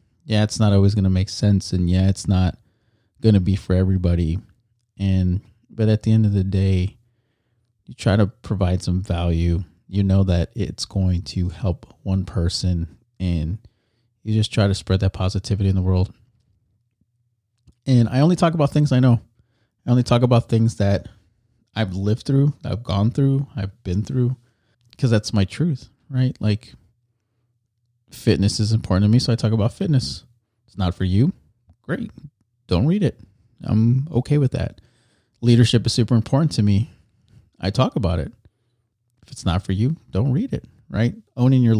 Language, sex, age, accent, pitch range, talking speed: English, male, 30-49, American, 95-120 Hz, 175 wpm